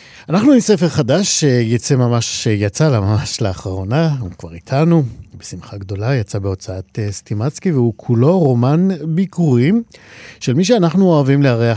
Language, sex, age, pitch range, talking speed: Hebrew, male, 50-69, 105-145 Hz, 135 wpm